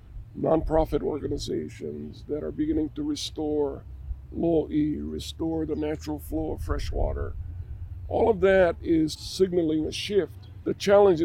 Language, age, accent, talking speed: English, 50-69, American, 135 wpm